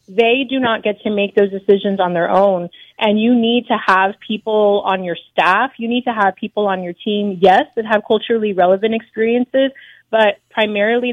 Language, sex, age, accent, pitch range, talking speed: English, female, 30-49, American, 195-225 Hz, 195 wpm